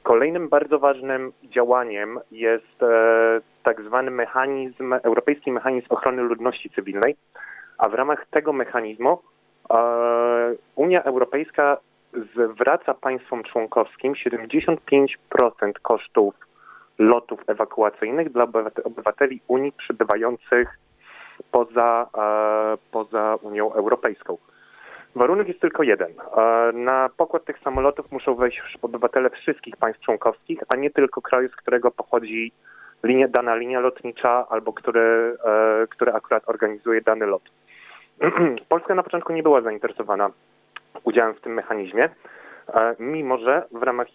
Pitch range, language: 115-140 Hz, Polish